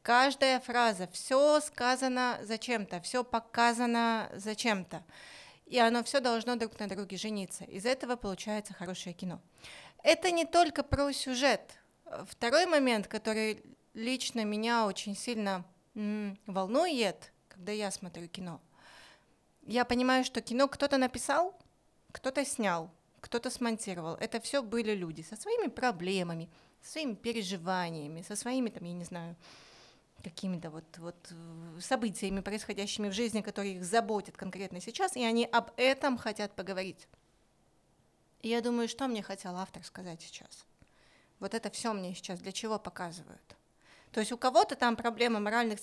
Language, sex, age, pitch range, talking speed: Russian, female, 30-49, 195-255 Hz, 140 wpm